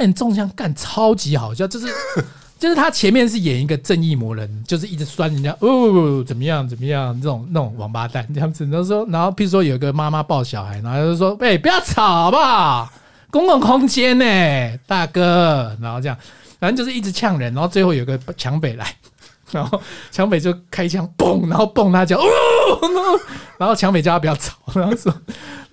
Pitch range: 140-220 Hz